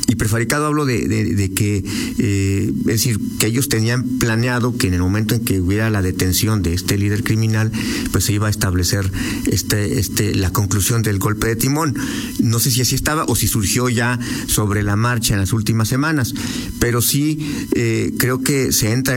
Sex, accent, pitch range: male, Mexican, 100-125 Hz